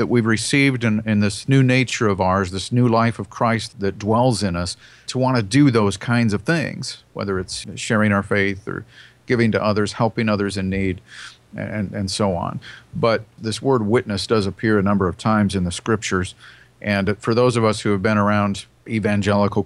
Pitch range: 100-120 Hz